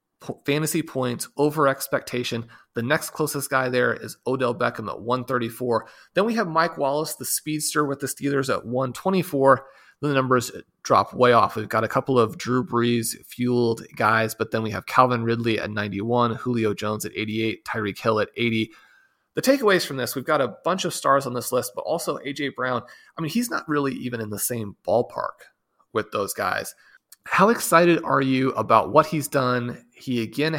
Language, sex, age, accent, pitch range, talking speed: English, male, 30-49, American, 120-140 Hz, 190 wpm